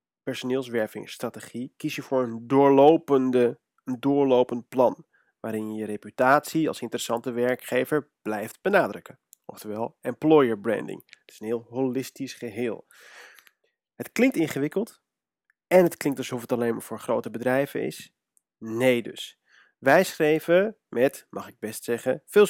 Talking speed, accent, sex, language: 135 wpm, Dutch, male, Dutch